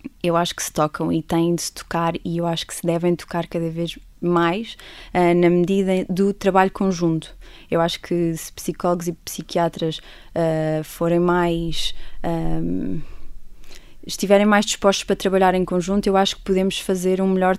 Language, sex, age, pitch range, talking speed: Portuguese, female, 20-39, 170-195 Hz, 165 wpm